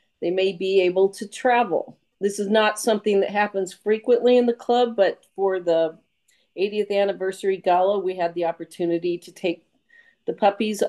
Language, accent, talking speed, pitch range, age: English, American, 165 wpm, 180-220 Hz, 50-69